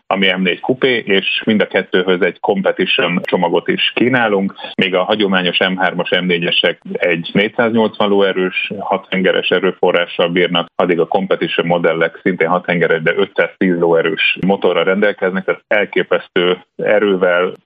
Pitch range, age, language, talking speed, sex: 95-135 Hz, 30-49, Hungarian, 130 wpm, male